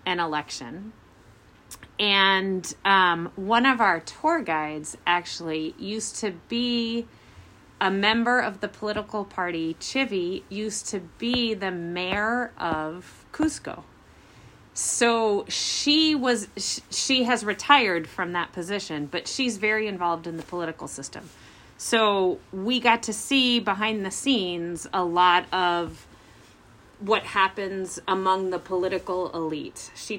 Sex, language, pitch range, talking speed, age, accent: female, English, 165-215 Hz, 125 wpm, 30-49, American